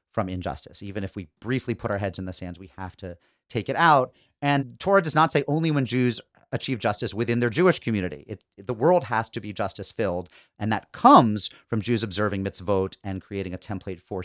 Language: English